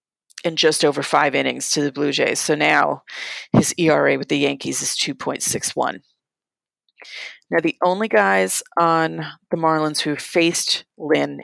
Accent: American